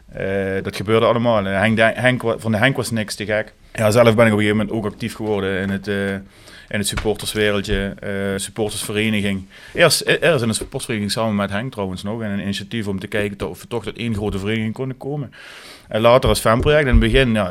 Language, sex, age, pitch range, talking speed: Dutch, male, 30-49, 100-115 Hz, 225 wpm